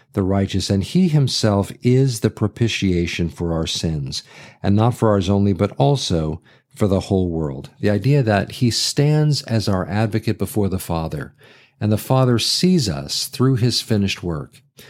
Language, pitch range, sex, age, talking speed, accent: English, 95-135 Hz, male, 50-69, 170 wpm, American